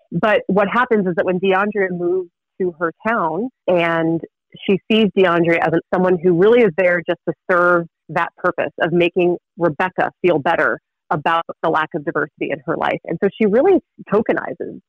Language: English